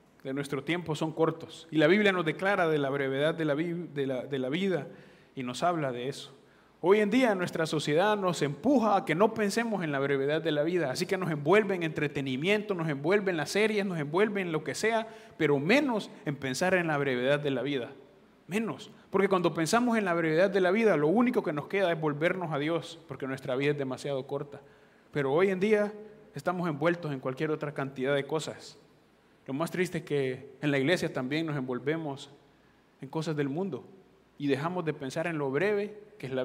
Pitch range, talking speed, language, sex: 140-185 Hz, 215 wpm, English, male